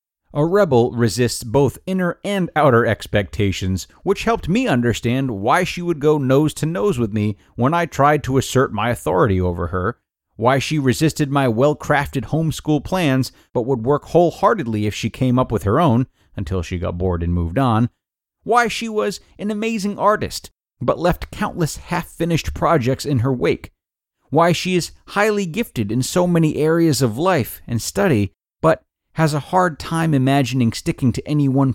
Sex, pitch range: male, 100-165 Hz